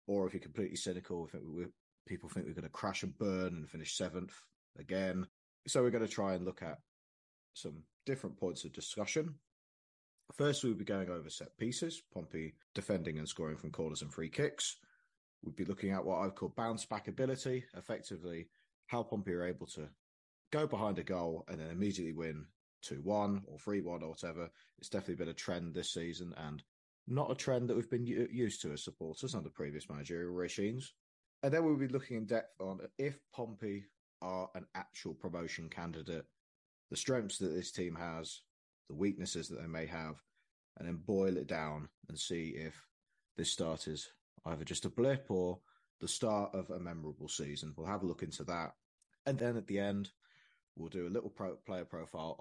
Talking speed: 190 wpm